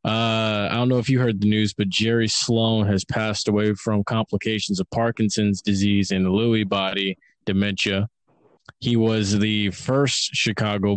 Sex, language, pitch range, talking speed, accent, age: male, English, 100-115 Hz, 160 wpm, American, 20-39